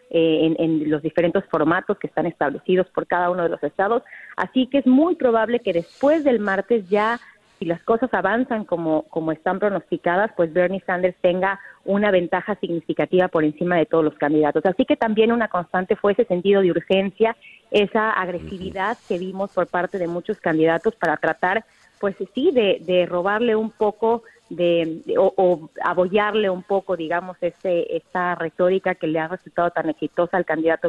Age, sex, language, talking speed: 30-49, female, Spanish, 180 wpm